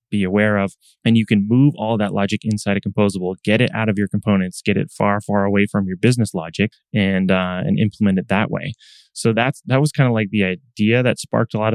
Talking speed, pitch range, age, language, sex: 245 wpm, 100-115 Hz, 20-39, English, male